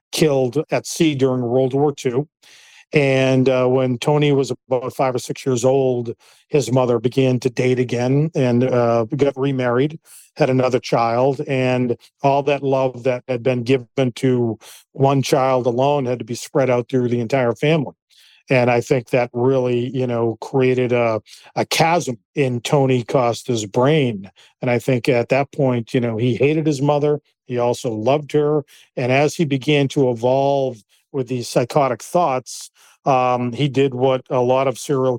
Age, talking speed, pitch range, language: 40-59, 170 wpm, 120-140 Hz, English